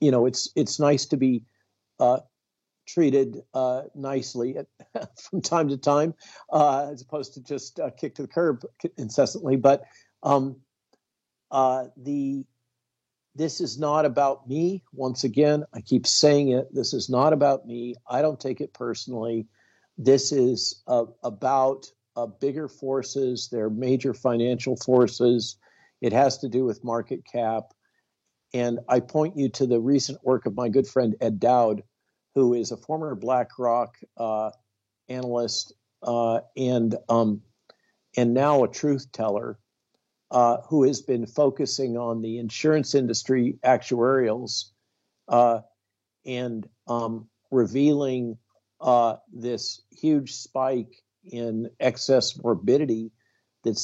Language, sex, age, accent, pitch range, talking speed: English, male, 50-69, American, 115-140 Hz, 135 wpm